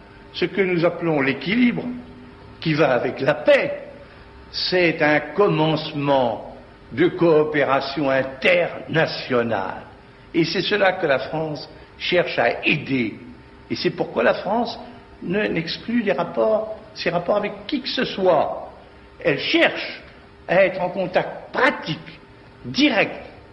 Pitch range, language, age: 130-190 Hz, French, 60-79